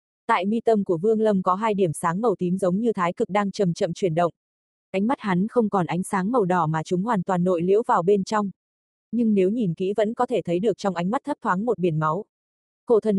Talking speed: 265 wpm